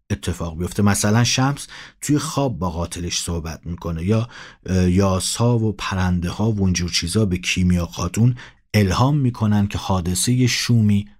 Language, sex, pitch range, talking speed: Persian, male, 90-115 Hz, 140 wpm